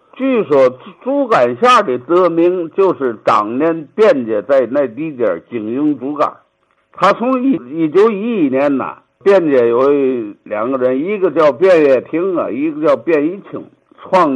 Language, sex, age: Chinese, male, 60-79